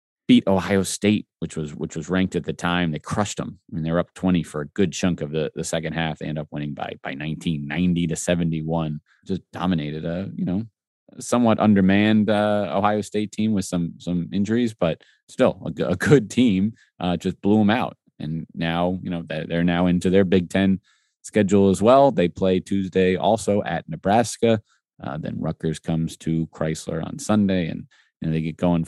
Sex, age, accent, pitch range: male, 30-49, American, 80-100 Hz